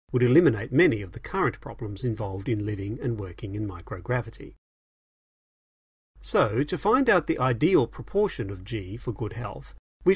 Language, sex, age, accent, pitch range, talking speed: English, male, 40-59, British, 100-130 Hz, 160 wpm